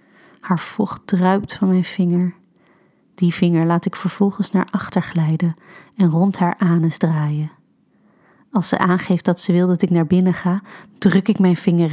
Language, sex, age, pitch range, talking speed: Dutch, female, 30-49, 175-195 Hz, 170 wpm